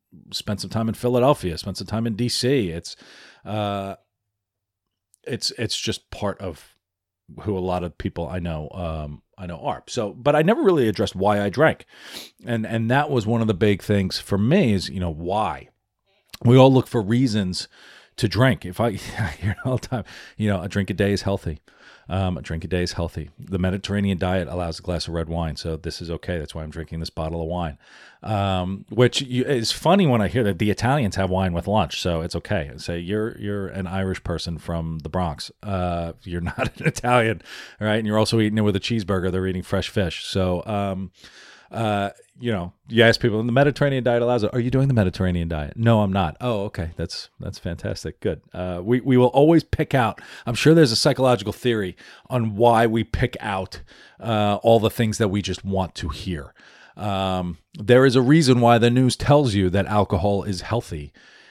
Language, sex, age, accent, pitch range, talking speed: English, male, 40-59, American, 90-115 Hz, 215 wpm